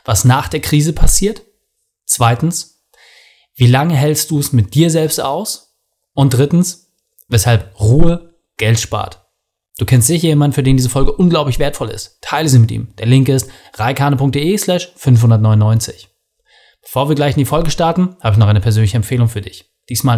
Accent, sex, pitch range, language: German, male, 120-160 Hz, German